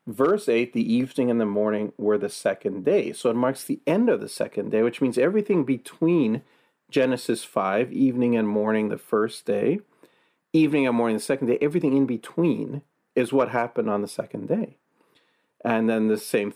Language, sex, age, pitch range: English, male, 40-59, 110-145 Hz